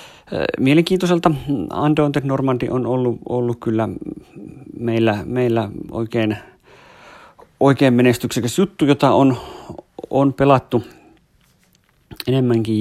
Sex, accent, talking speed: male, native, 85 wpm